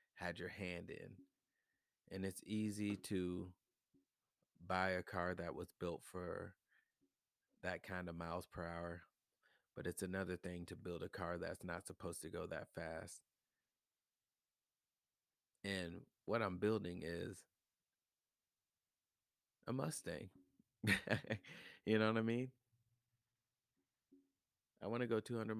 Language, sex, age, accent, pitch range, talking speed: English, male, 30-49, American, 90-105 Hz, 120 wpm